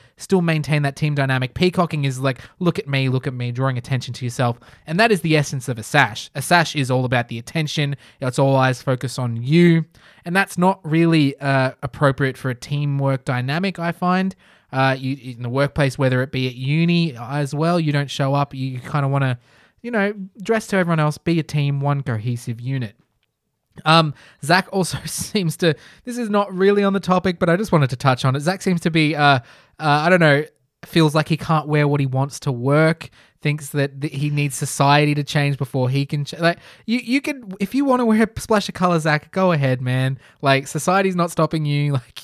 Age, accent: 20-39, Australian